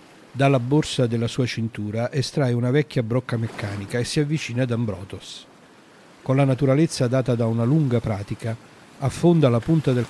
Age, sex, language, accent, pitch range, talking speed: 50-69, male, Italian, native, 115-140 Hz, 160 wpm